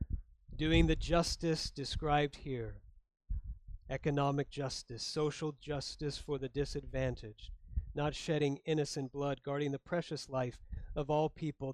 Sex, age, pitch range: male, 40-59, 135-185 Hz